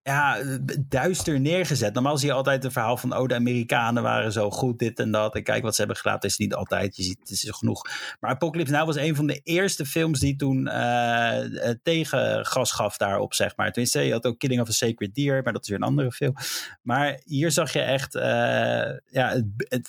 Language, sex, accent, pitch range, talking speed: Dutch, male, Dutch, 115-140 Hz, 225 wpm